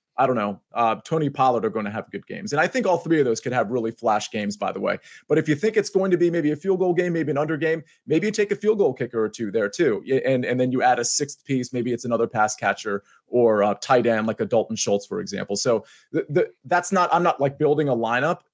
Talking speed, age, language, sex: 280 wpm, 30-49, English, male